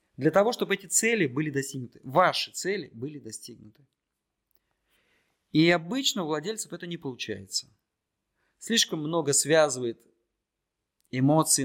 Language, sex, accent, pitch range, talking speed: Russian, male, native, 110-155 Hz, 115 wpm